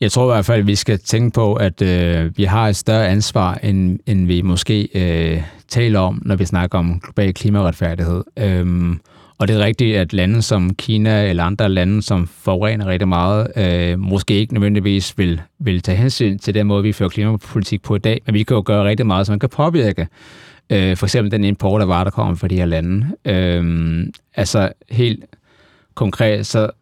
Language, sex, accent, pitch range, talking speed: Danish, male, native, 95-115 Hz, 205 wpm